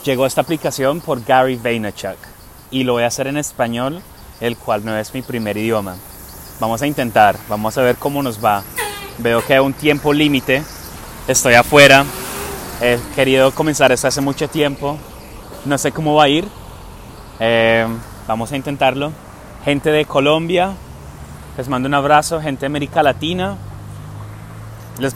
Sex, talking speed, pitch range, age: male, 155 wpm, 120-145 Hz, 30-49